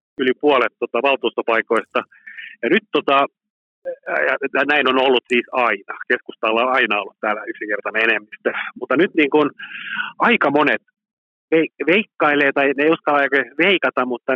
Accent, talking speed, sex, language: native, 135 wpm, male, Finnish